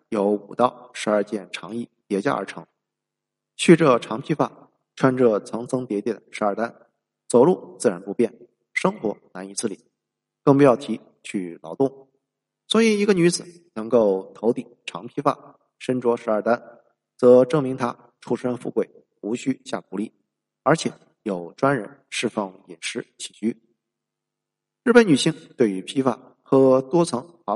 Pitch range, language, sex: 105-135 Hz, Chinese, male